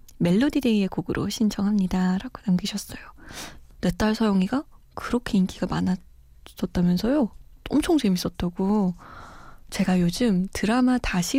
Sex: female